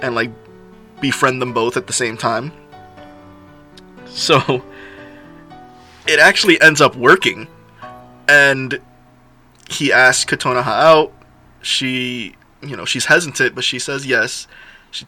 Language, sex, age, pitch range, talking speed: English, male, 20-39, 120-150 Hz, 120 wpm